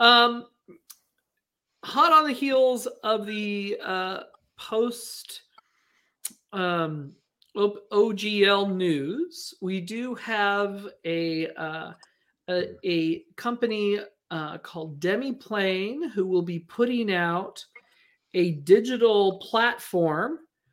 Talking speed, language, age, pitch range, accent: 90 wpm, English, 40-59, 165-205 Hz, American